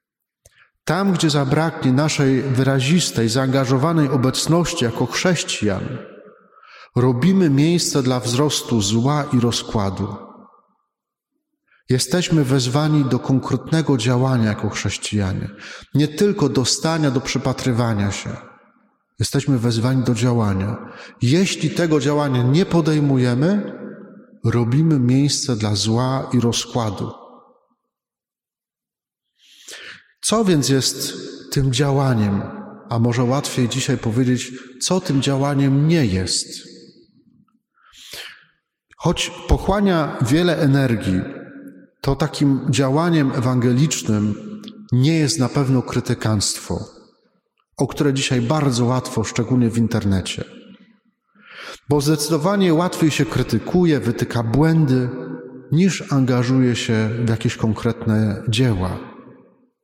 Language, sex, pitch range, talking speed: Polish, male, 120-155 Hz, 95 wpm